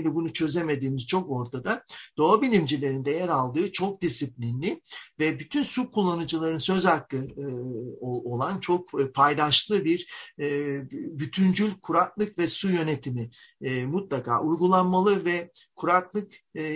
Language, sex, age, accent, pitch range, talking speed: Turkish, male, 50-69, native, 140-180 Hz, 120 wpm